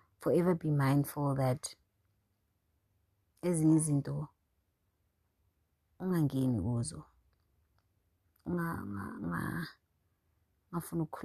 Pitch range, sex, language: 95-155 Hz, female, English